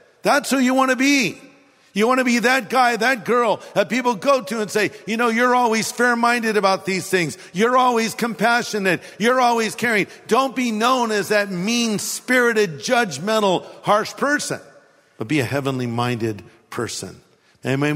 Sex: male